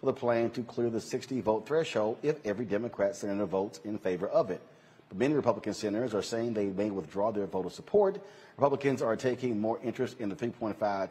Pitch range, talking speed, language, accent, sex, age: 105-130 Hz, 200 wpm, English, American, male, 40-59